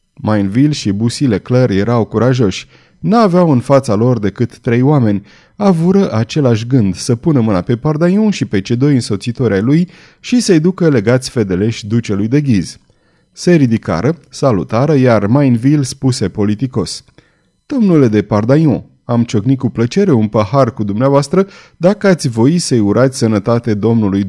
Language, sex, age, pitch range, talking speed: Romanian, male, 30-49, 115-165 Hz, 150 wpm